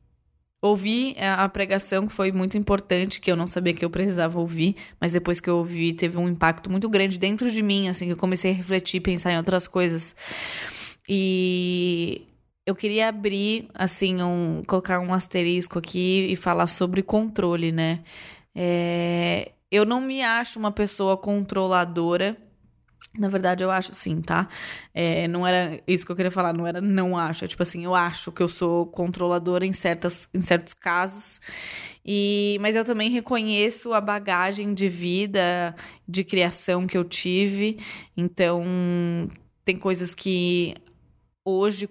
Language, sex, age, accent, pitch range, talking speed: Portuguese, female, 20-39, Brazilian, 175-195 Hz, 150 wpm